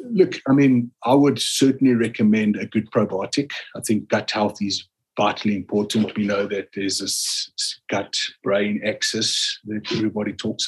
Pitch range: 105-125 Hz